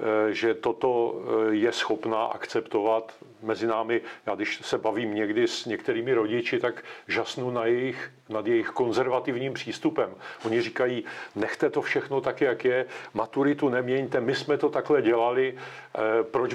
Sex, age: male, 50-69